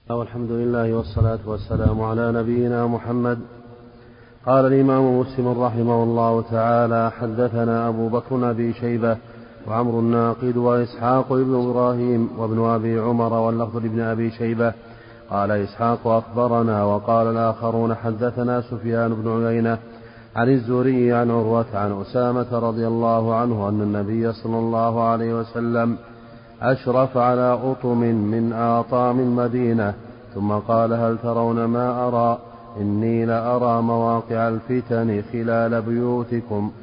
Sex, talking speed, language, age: male, 115 wpm, Arabic, 40-59